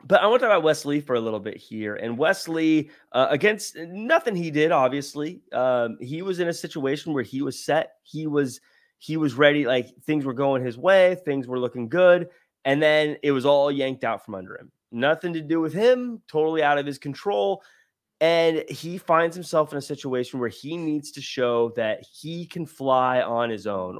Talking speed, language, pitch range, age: 210 wpm, English, 125-160 Hz, 20-39